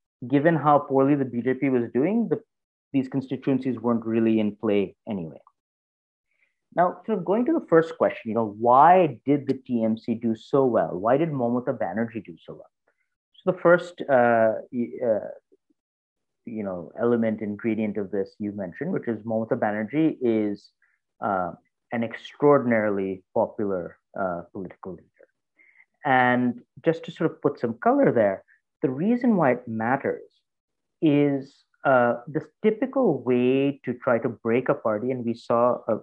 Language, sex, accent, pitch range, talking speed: English, male, Indian, 110-145 Hz, 155 wpm